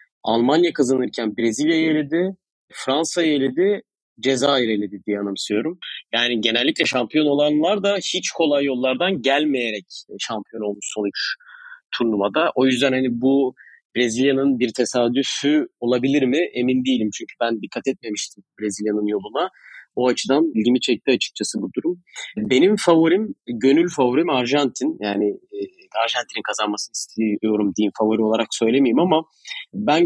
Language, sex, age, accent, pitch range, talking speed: Turkish, male, 30-49, native, 110-145 Hz, 125 wpm